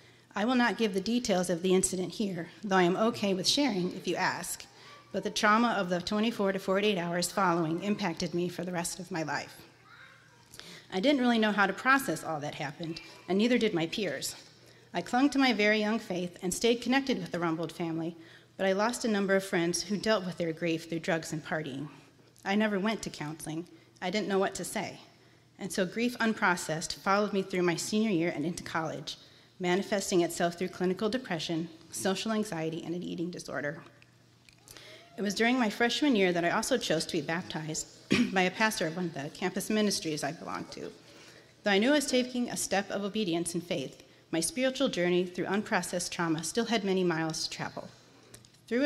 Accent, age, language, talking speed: American, 30-49, English, 205 wpm